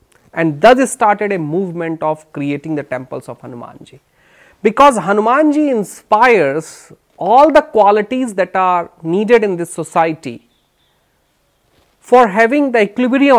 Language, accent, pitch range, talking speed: Hindi, native, 175-255 Hz, 130 wpm